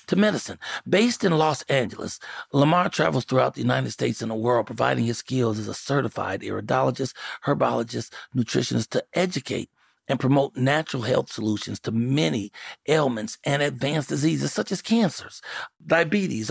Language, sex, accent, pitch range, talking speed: English, male, American, 125-165 Hz, 150 wpm